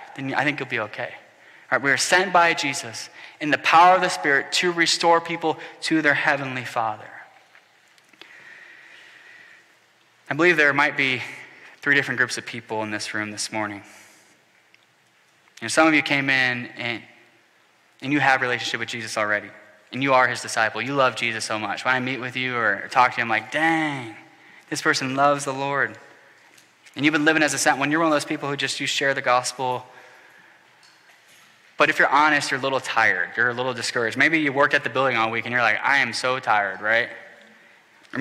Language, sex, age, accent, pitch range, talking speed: English, male, 10-29, American, 125-150 Hz, 200 wpm